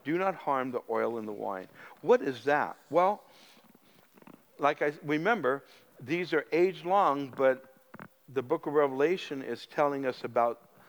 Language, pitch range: English, 125-160 Hz